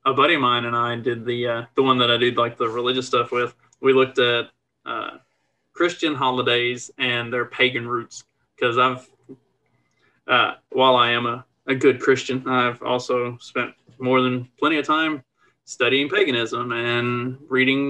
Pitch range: 125-145 Hz